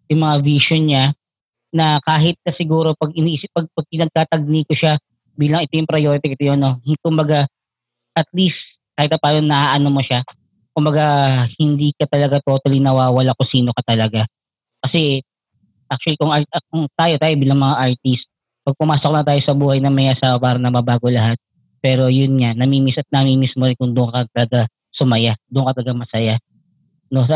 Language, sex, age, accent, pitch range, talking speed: English, female, 20-39, Filipino, 120-150 Hz, 180 wpm